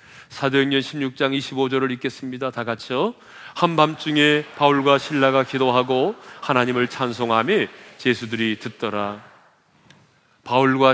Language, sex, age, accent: Korean, male, 40-59, native